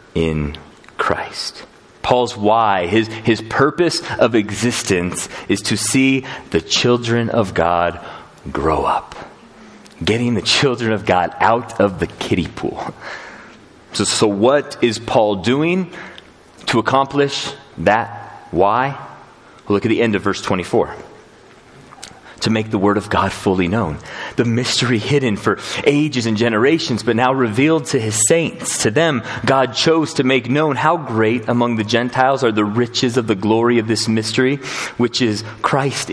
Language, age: English, 30-49